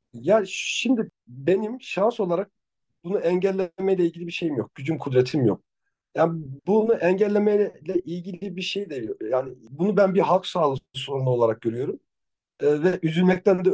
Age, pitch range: 50-69, 140-190 Hz